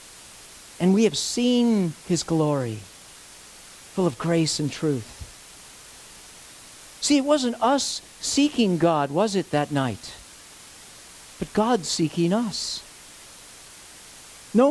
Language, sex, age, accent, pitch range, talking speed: English, male, 50-69, American, 155-215 Hz, 105 wpm